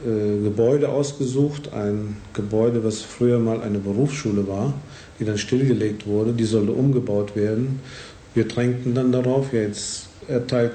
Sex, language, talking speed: male, Bulgarian, 135 wpm